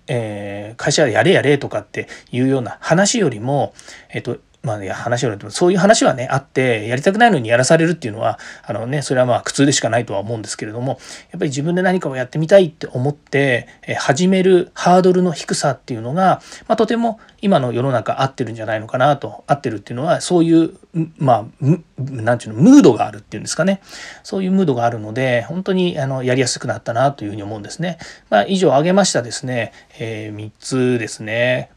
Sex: male